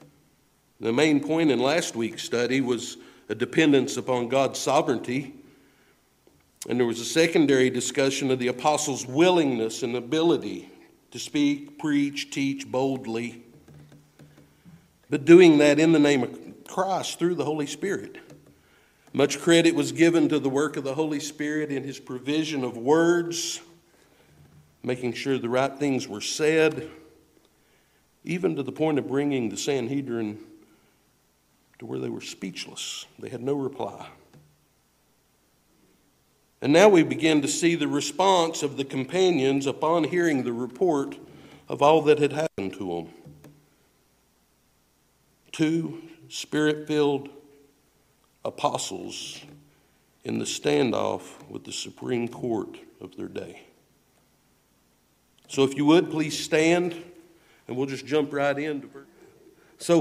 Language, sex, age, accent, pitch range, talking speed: English, male, 60-79, American, 125-165 Hz, 130 wpm